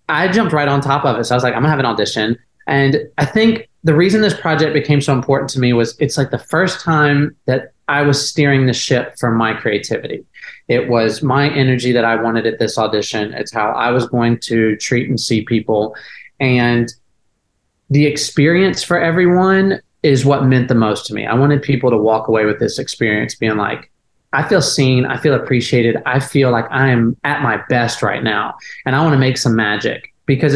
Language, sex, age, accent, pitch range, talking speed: English, male, 30-49, American, 120-150 Hz, 210 wpm